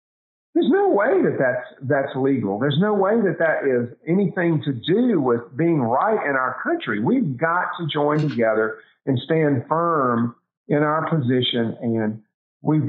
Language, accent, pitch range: English, American, 125-160 Hz